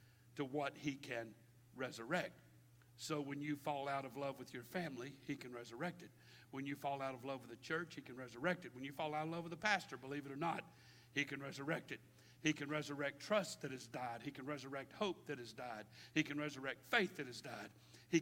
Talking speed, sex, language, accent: 235 wpm, male, English, American